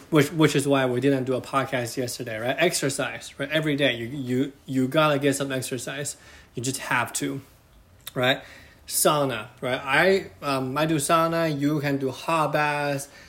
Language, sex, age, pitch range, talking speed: English, male, 20-39, 125-150 Hz, 175 wpm